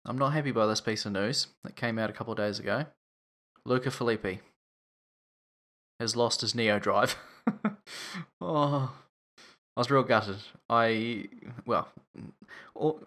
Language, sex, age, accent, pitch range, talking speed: English, male, 10-29, Australian, 105-120 Hz, 140 wpm